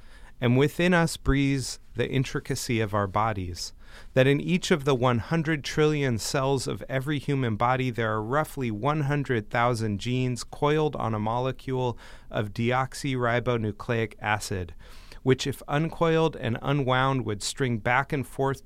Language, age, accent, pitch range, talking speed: English, 30-49, American, 110-140 Hz, 140 wpm